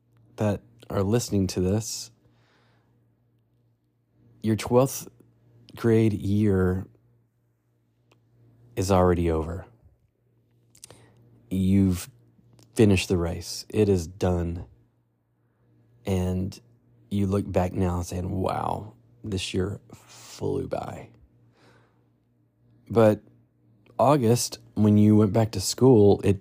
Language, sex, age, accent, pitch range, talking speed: English, male, 30-49, American, 90-120 Hz, 90 wpm